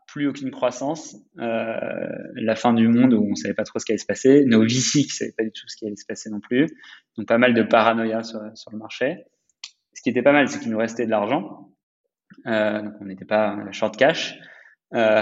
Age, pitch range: 20-39, 105-115 Hz